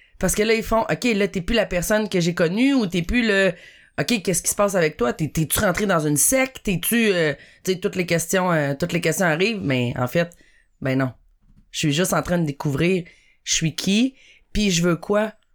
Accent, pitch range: Canadian, 170-230 Hz